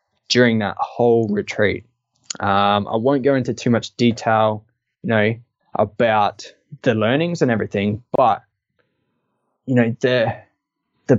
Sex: male